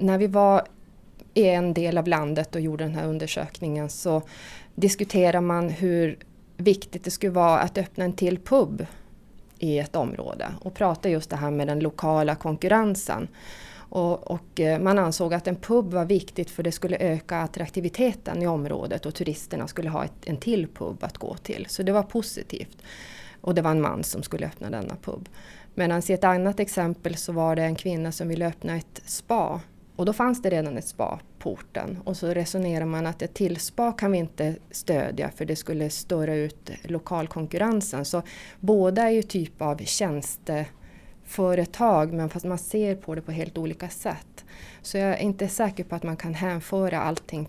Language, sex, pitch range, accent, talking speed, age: Swedish, female, 160-190 Hz, native, 185 wpm, 30-49